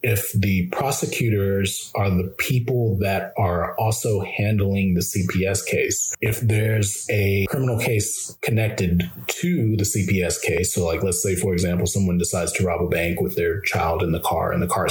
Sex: male